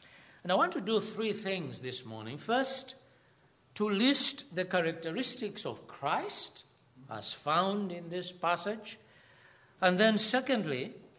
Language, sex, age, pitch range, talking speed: English, male, 60-79, 145-210 Hz, 130 wpm